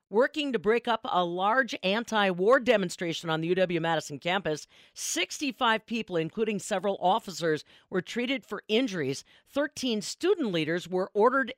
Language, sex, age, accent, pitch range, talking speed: English, female, 50-69, American, 175-245 Hz, 135 wpm